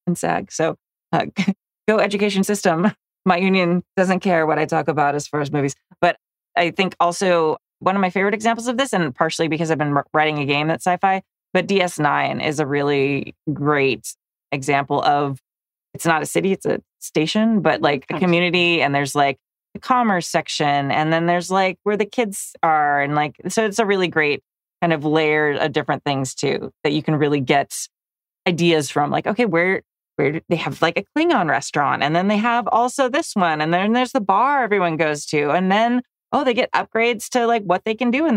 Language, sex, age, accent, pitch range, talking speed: English, female, 30-49, American, 150-195 Hz, 205 wpm